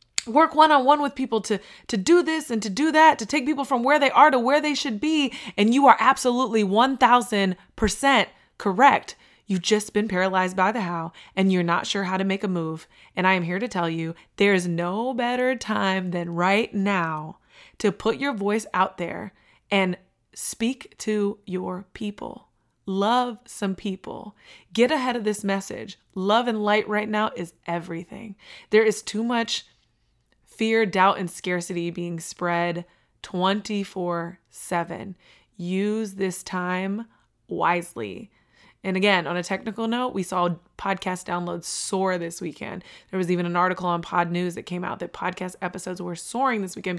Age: 20-39